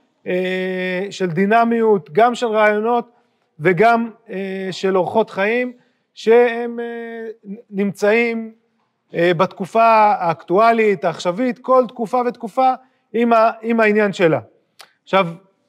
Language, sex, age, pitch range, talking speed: Hebrew, male, 30-49, 185-230 Hz, 105 wpm